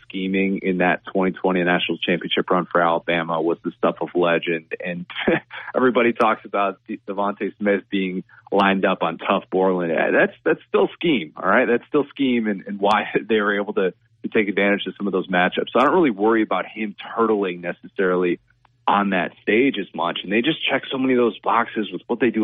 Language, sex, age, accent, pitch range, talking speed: English, male, 30-49, American, 95-120 Hz, 205 wpm